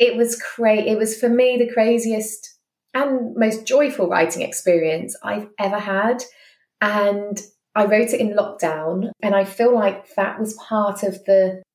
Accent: British